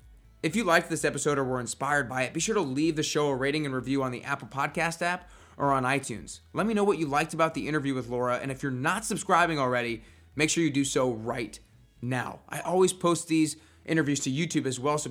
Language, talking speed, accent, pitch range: English, 245 wpm, American, 130-165 Hz